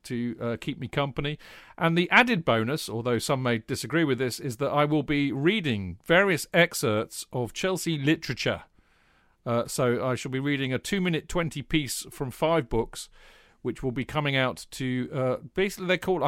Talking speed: 190 wpm